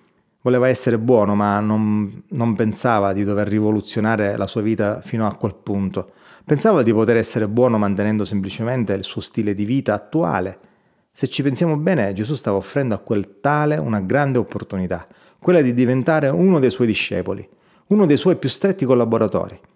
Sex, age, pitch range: male, 30-49, 105-140 Hz